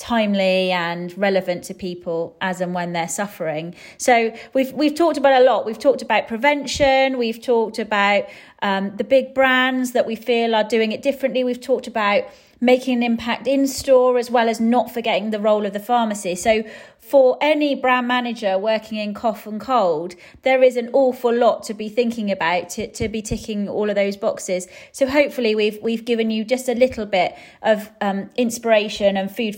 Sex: female